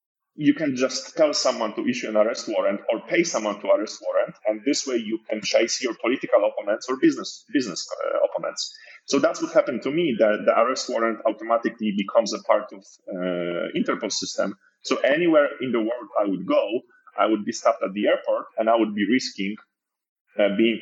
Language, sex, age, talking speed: English, male, 30-49, 200 wpm